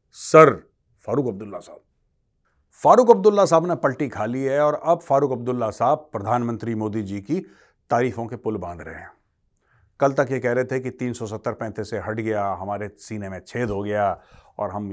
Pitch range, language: 105-135 Hz, Hindi